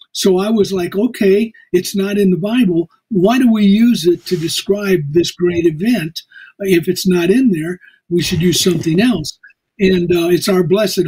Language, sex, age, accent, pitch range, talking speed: English, male, 50-69, American, 175-200 Hz, 190 wpm